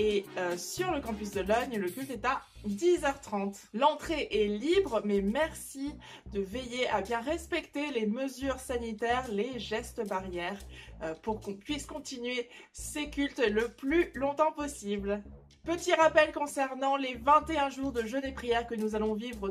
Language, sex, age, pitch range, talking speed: French, female, 20-39, 210-285 Hz, 165 wpm